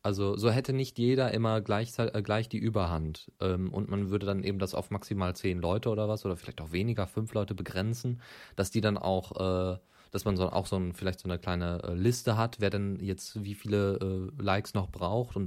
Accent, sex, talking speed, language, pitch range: German, male, 230 wpm, German, 95-110 Hz